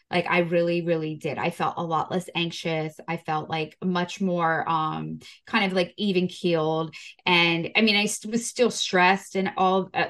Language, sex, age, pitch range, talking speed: English, female, 20-39, 155-185 Hz, 190 wpm